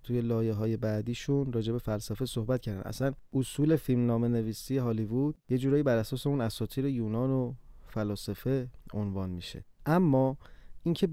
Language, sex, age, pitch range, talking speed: Persian, male, 30-49, 110-140 Hz, 140 wpm